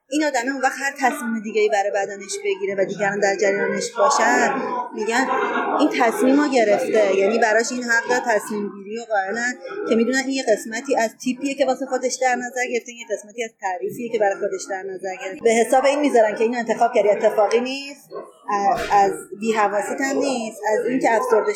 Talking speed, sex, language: 185 wpm, female, Persian